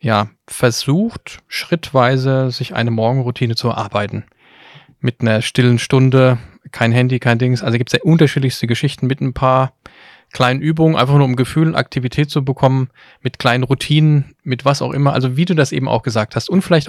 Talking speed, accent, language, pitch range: 180 wpm, German, German, 120-140 Hz